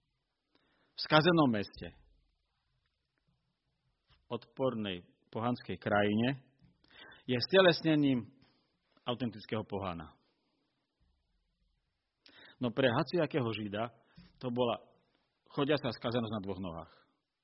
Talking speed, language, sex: 75 wpm, Slovak, male